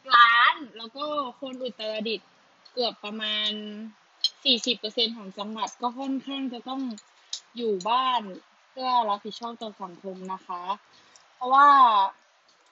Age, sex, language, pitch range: 20-39, female, Thai, 215-260 Hz